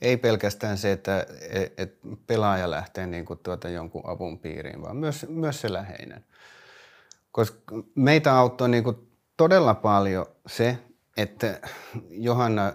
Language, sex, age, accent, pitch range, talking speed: Finnish, male, 30-49, native, 100-130 Hz, 120 wpm